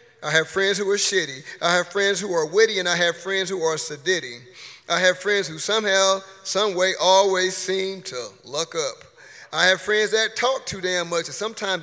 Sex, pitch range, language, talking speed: male, 170-210 Hz, English, 205 wpm